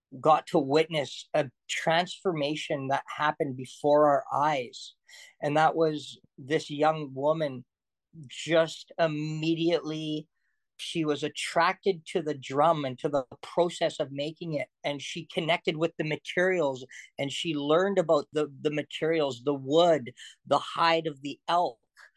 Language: English